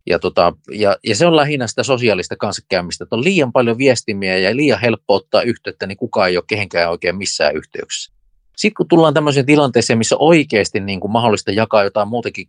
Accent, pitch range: native, 95-130 Hz